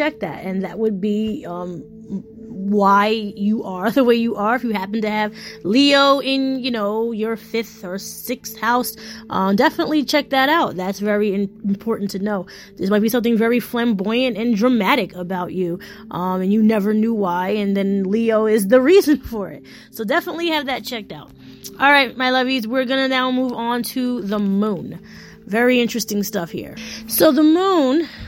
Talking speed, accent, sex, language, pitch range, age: 190 wpm, American, female, English, 200-245 Hz, 20-39